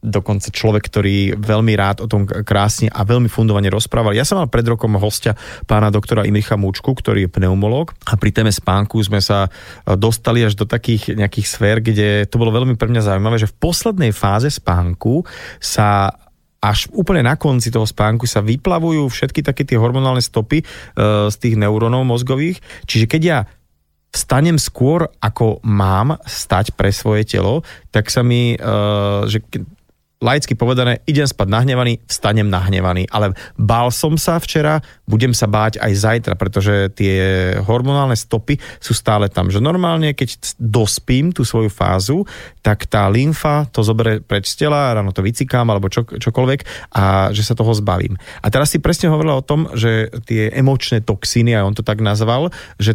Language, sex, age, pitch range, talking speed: Slovak, male, 30-49, 105-125 Hz, 170 wpm